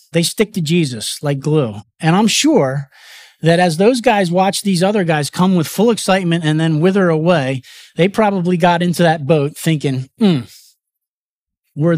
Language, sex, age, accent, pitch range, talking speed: English, male, 40-59, American, 145-185 Hz, 170 wpm